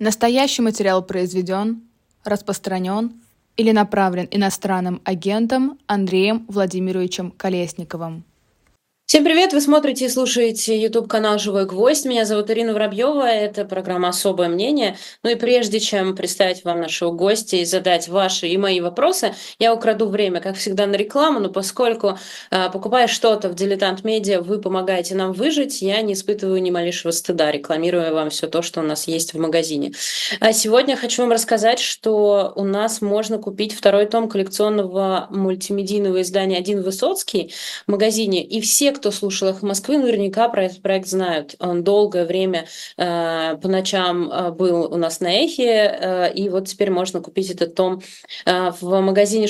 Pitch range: 180-220 Hz